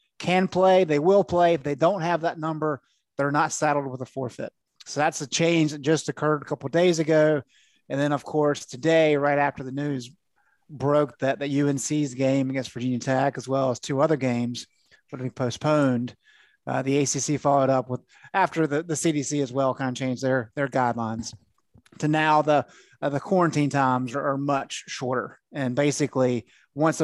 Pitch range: 130-160 Hz